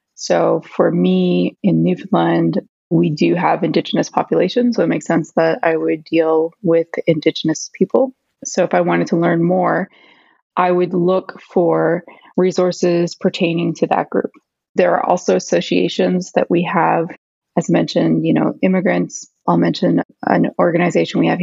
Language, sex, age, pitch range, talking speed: English, female, 20-39, 155-180 Hz, 155 wpm